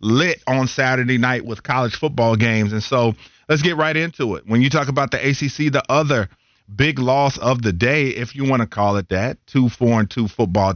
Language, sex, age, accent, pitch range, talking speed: English, male, 40-59, American, 110-130 Hz, 225 wpm